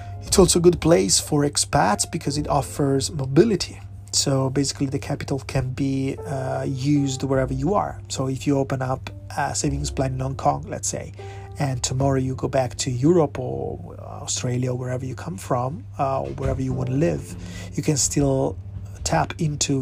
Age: 30-49